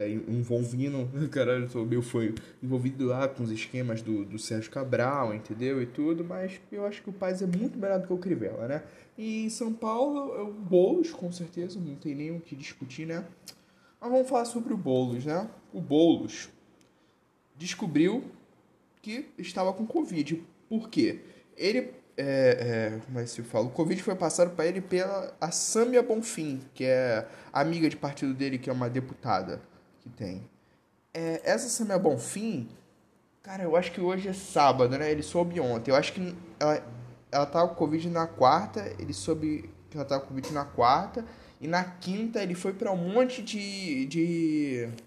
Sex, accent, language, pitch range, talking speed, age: male, Brazilian, Portuguese, 130-195 Hz, 180 wpm, 10-29